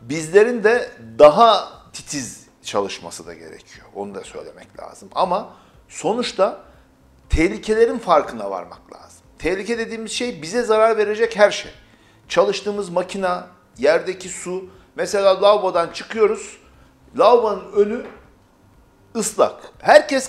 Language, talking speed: Turkish, 105 wpm